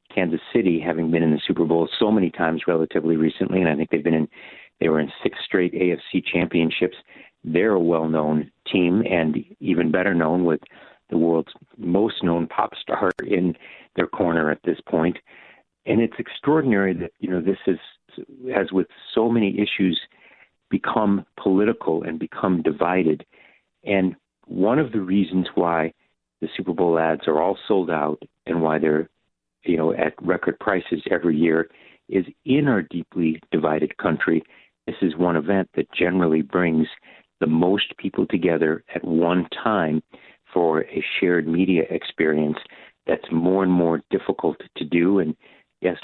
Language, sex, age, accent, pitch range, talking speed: English, male, 50-69, American, 80-90 Hz, 160 wpm